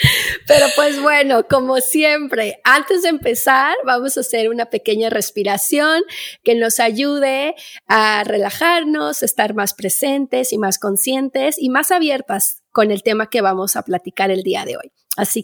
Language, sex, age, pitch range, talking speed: Spanish, female, 30-49, 200-280 Hz, 155 wpm